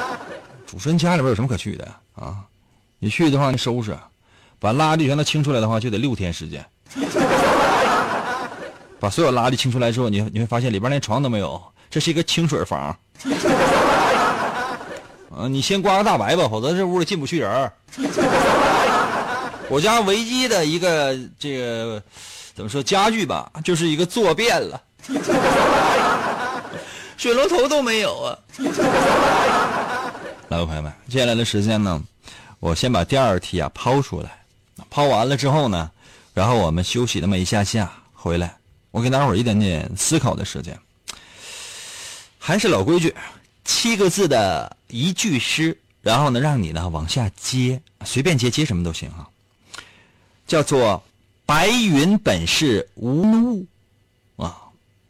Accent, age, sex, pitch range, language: native, 30-49, male, 105-160 Hz, Chinese